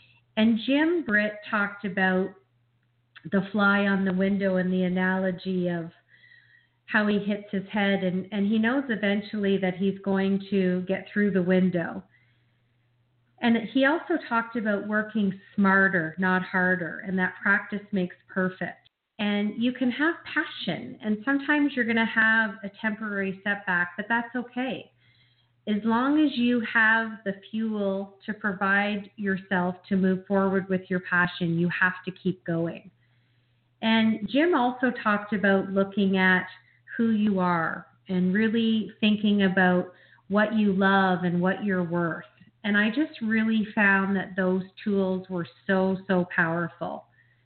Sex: female